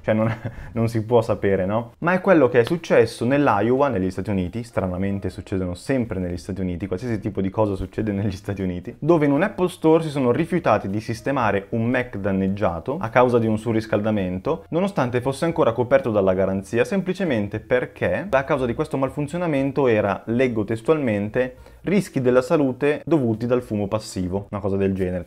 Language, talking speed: Italian, 180 wpm